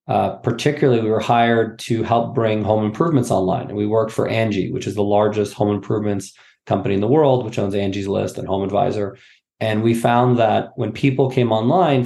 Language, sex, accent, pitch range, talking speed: English, male, American, 110-130 Hz, 205 wpm